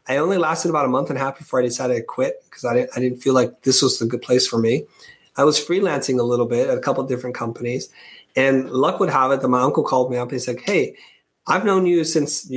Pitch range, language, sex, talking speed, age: 125-155 Hz, Portuguese, male, 280 wpm, 30-49